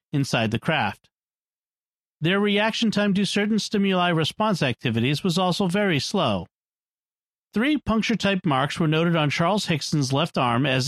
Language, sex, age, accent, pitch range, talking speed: English, male, 40-59, American, 135-190 Hz, 145 wpm